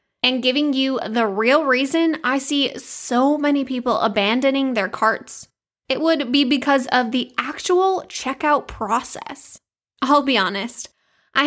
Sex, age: female, 10-29